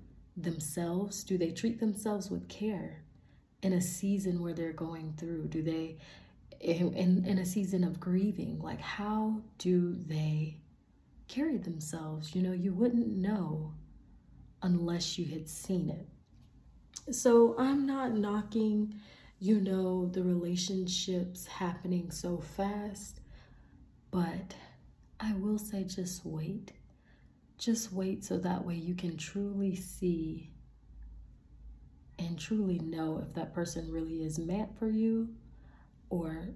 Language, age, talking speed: English, 30-49, 125 wpm